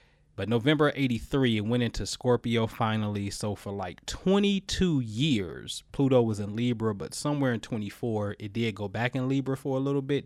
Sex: male